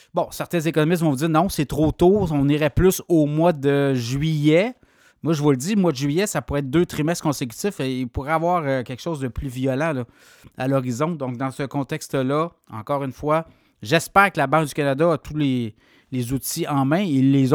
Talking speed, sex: 225 wpm, male